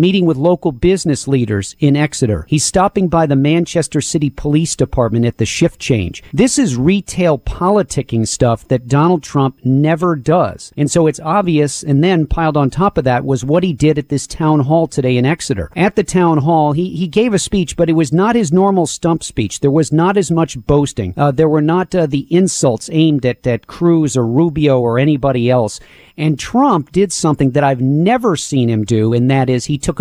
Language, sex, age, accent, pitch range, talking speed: English, male, 50-69, American, 130-170 Hz, 210 wpm